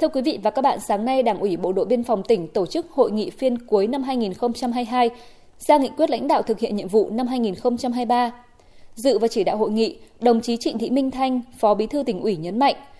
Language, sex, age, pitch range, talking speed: Vietnamese, female, 20-39, 215-270 Hz, 245 wpm